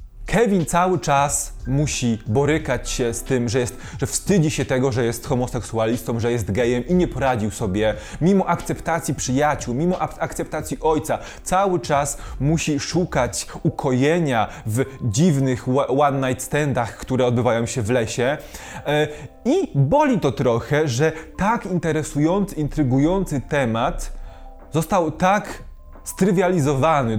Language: Polish